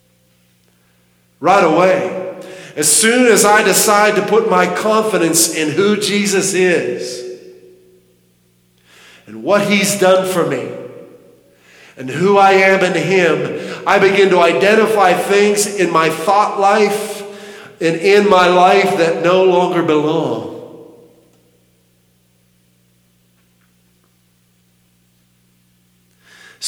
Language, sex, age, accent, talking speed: English, male, 50-69, American, 100 wpm